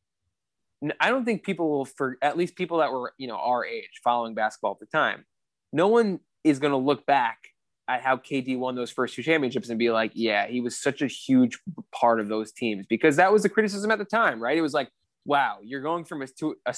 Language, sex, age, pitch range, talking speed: English, male, 20-39, 115-155 Hz, 240 wpm